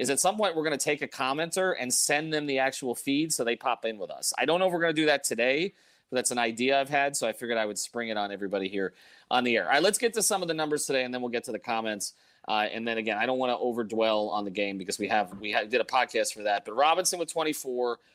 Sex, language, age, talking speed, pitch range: male, English, 30-49, 310 wpm, 120-155 Hz